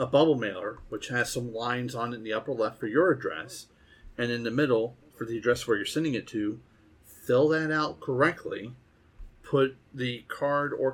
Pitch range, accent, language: 110-140 Hz, American, English